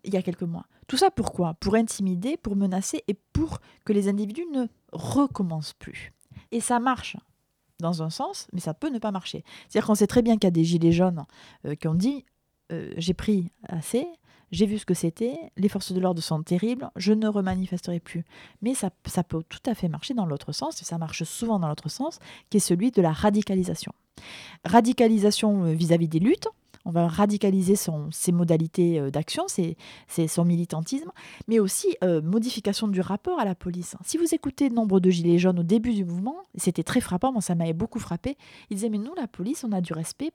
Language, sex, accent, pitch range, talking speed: French, female, French, 175-230 Hz, 210 wpm